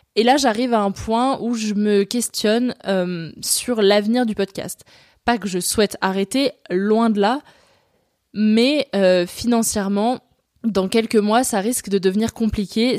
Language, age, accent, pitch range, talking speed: French, 20-39, French, 190-230 Hz, 155 wpm